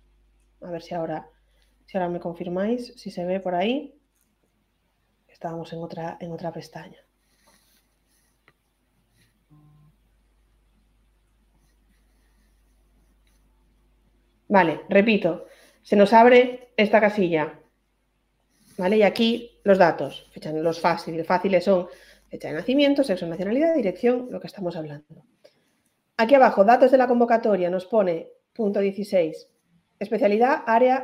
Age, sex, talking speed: 30-49, female, 110 wpm